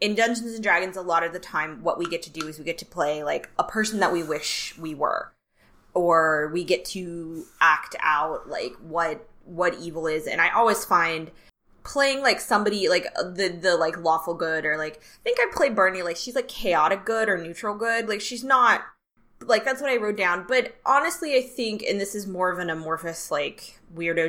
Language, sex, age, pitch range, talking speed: English, female, 20-39, 170-235 Hz, 215 wpm